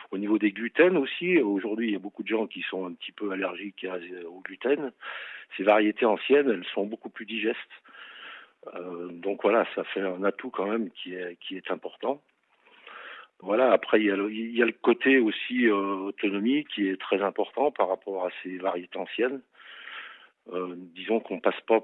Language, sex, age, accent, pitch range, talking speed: French, male, 40-59, French, 90-110 Hz, 190 wpm